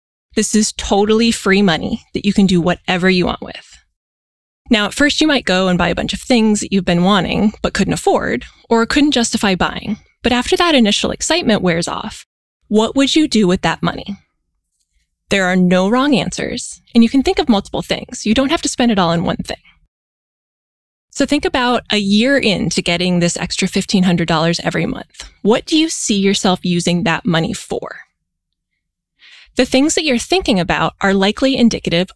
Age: 20-39